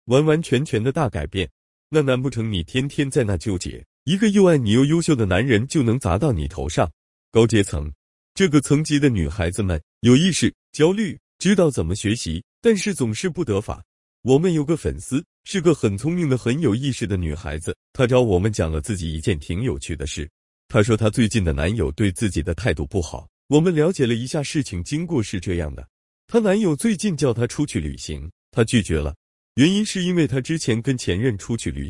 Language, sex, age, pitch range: Chinese, male, 30-49, 85-145 Hz